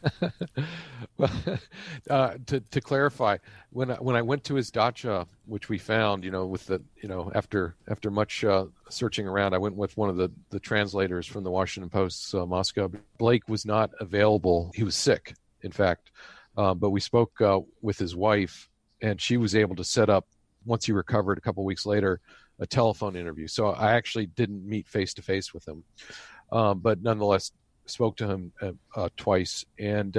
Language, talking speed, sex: English, 190 wpm, male